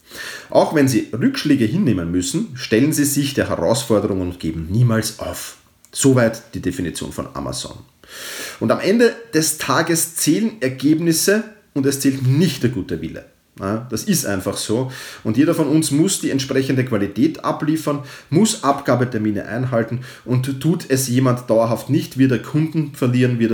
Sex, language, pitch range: male, German, 115-150 Hz